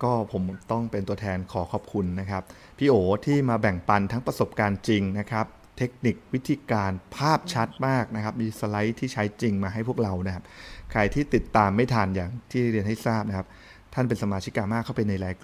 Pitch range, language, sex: 100-120 Hz, Thai, male